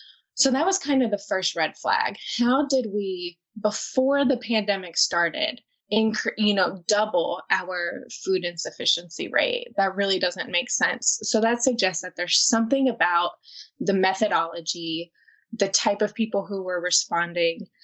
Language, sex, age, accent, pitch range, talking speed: English, female, 20-39, American, 180-240 Hz, 150 wpm